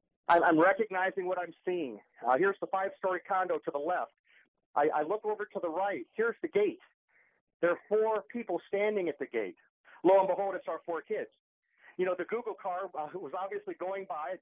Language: English